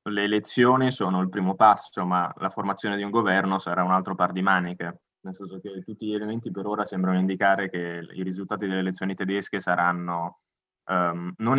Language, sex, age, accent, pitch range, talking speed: Italian, male, 20-39, native, 90-105 Hz, 185 wpm